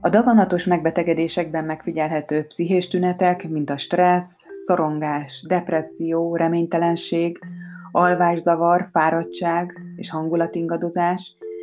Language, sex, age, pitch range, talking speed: Hungarian, female, 30-49, 155-180 Hz, 85 wpm